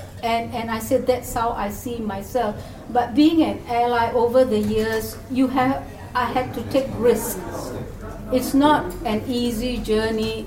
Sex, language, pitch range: female, English, 215-255 Hz